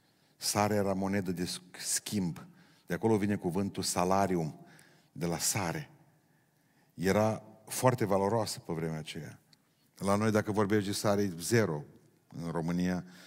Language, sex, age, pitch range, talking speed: Romanian, male, 50-69, 90-110 Hz, 125 wpm